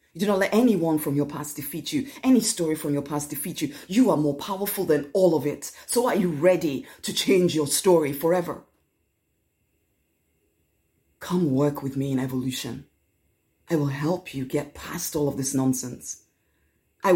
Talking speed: 180 wpm